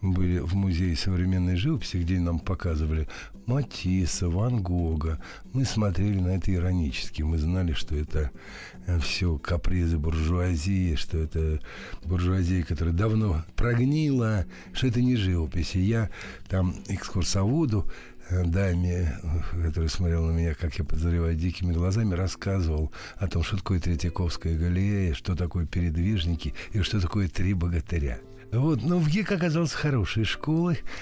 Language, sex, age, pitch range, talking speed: Russian, male, 60-79, 85-105 Hz, 135 wpm